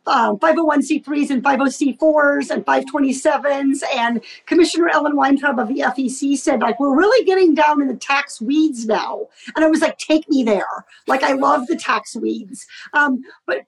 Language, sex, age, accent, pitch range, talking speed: English, female, 40-59, American, 255-335 Hz, 170 wpm